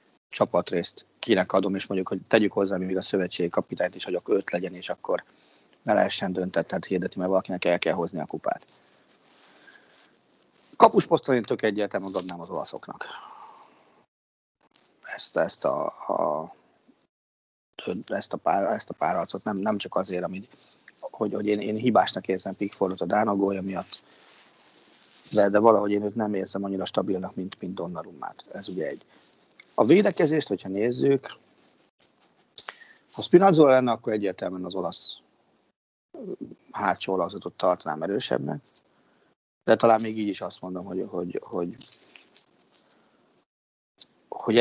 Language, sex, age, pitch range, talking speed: Hungarian, male, 30-49, 95-110 Hz, 130 wpm